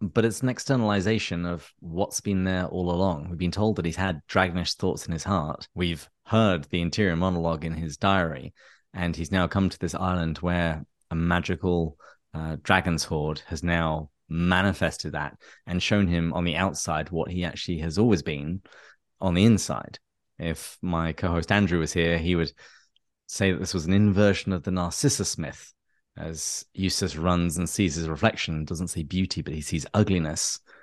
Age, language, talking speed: 20-39, English, 180 wpm